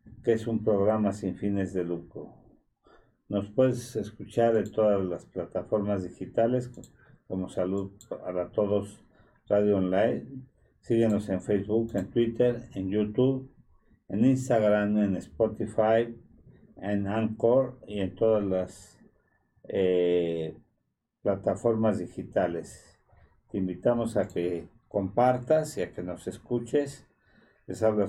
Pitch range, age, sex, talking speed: 95-115 Hz, 50-69, male, 115 wpm